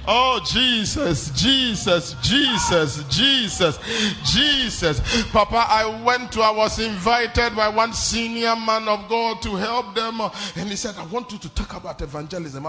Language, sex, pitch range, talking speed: English, male, 185-245 Hz, 150 wpm